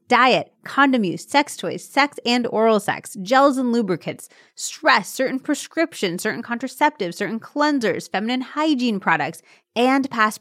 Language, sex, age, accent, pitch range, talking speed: English, female, 30-49, American, 180-235 Hz, 140 wpm